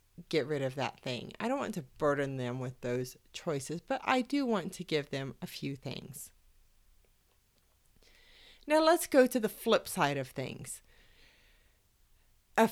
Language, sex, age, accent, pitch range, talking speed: English, female, 40-59, American, 140-225 Hz, 160 wpm